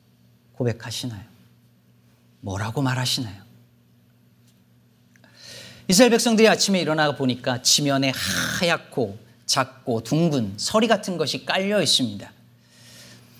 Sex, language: male, Korean